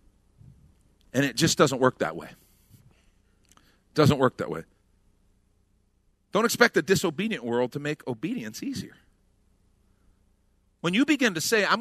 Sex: male